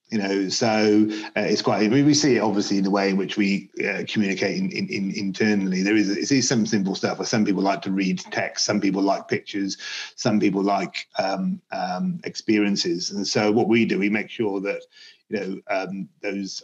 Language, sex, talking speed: English, male, 200 wpm